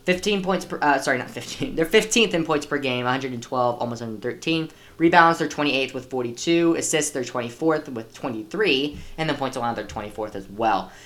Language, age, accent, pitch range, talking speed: English, 10-29, American, 120-160 Hz, 190 wpm